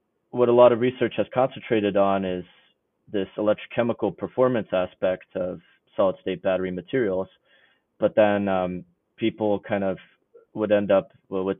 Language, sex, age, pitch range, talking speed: English, male, 30-49, 95-110 Hz, 145 wpm